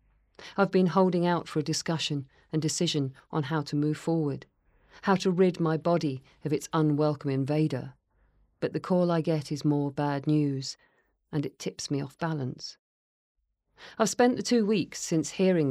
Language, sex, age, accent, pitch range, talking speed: English, female, 40-59, British, 140-180 Hz, 170 wpm